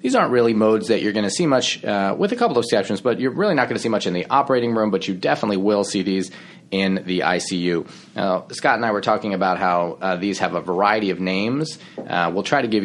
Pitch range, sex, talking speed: 90-105 Hz, male, 265 wpm